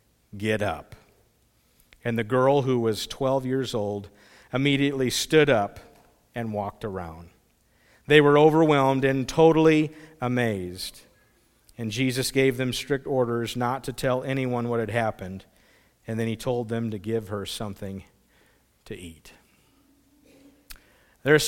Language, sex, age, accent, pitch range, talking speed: English, male, 50-69, American, 120-155 Hz, 130 wpm